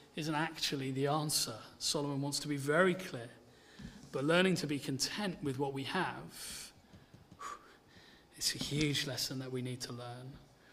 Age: 30-49